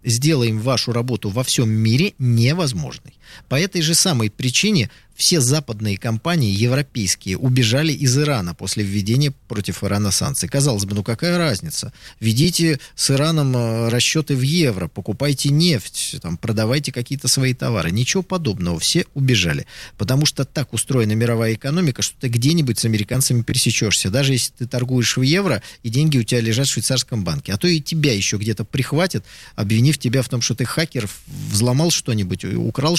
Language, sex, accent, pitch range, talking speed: Russian, male, native, 110-150 Hz, 160 wpm